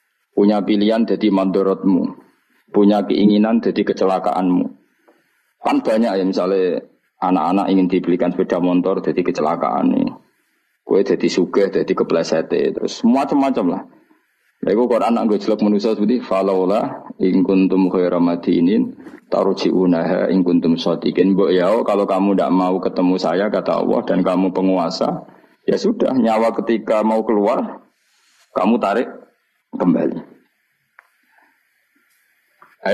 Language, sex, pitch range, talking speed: Indonesian, male, 95-155 Hz, 105 wpm